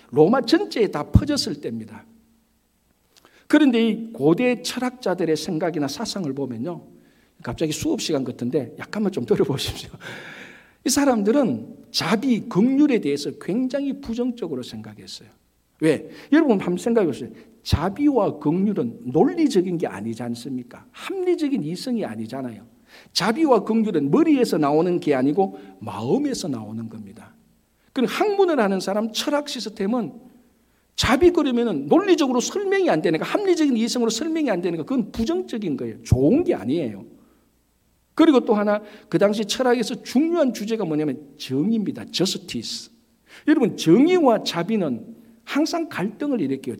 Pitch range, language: 160-265 Hz, Korean